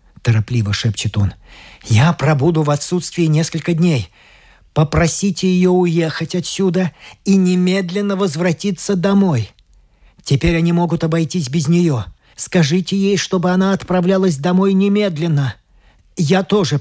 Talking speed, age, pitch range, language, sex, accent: 115 wpm, 40-59, 120-185 Hz, Russian, male, native